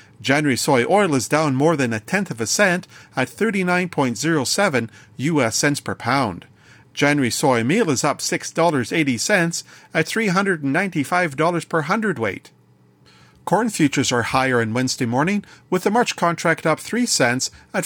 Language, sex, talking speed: English, male, 140 wpm